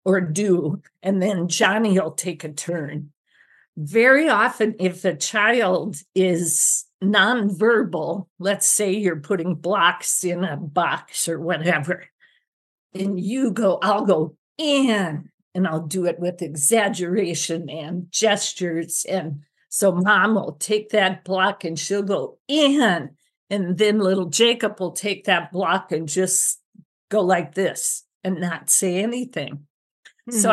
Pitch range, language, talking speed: 175-215 Hz, English, 135 wpm